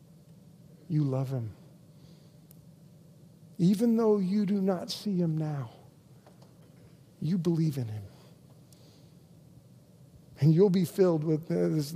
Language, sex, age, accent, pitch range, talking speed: English, male, 50-69, American, 140-165 Hz, 110 wpm